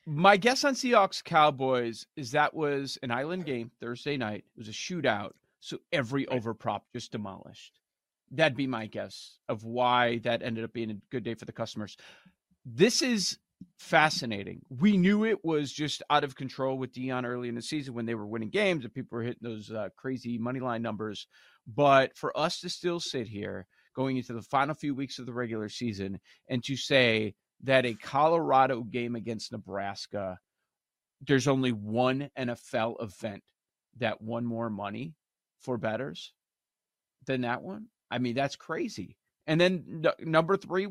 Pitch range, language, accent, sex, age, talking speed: 120-175 Hz, English, American, male, 40-59, 170 wpm